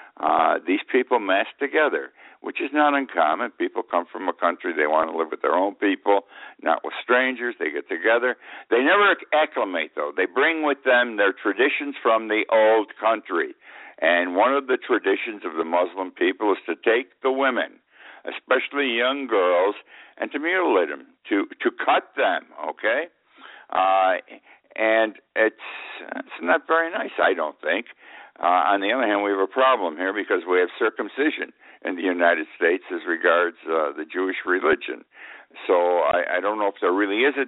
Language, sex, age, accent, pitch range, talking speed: English, male, 60-79, American, 100-145 Hz, 180 wpm